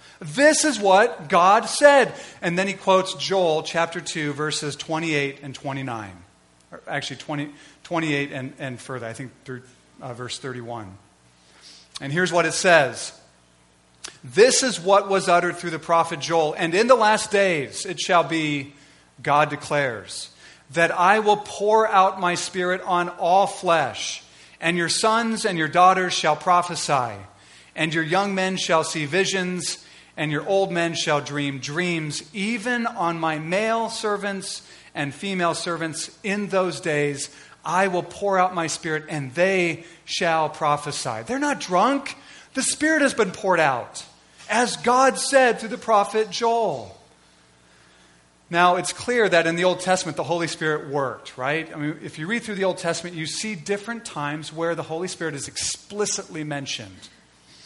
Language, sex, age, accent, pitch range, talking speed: English, male, 40-59, American, 145-195 Hz, 160 wpm